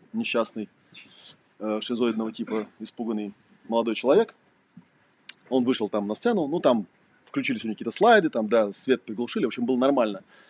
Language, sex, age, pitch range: Russian, male, 20-39, 115-145 Hz